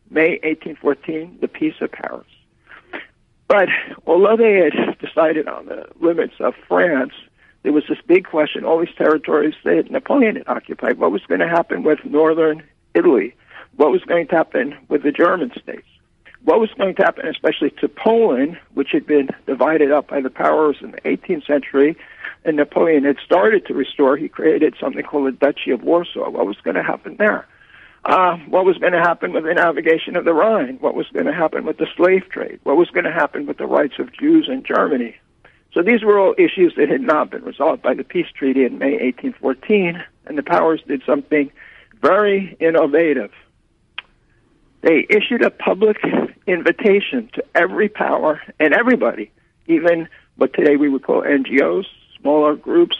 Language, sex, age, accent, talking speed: English, male, 60-79, American, 180 wpm